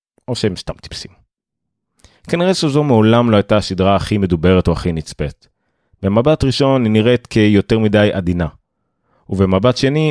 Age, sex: 30-49, male